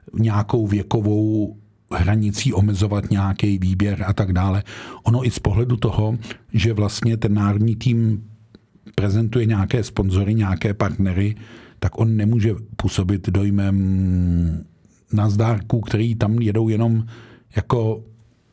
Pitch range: 110-125 Hz